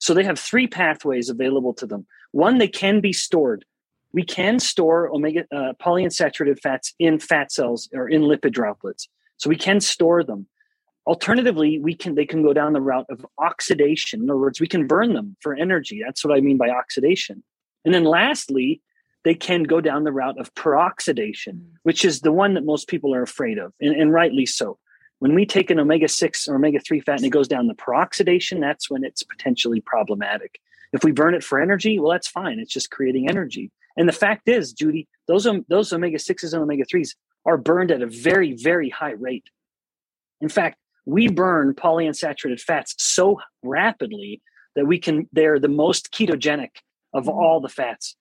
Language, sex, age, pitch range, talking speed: English, male, 30-49, 150-210 Hz, 190 wpm